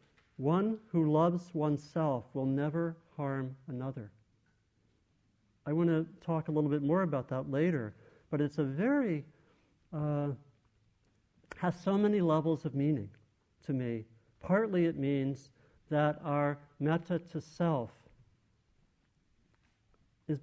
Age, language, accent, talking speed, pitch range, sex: 50-69, English, American, 120 wpm, 115-155 Hz, male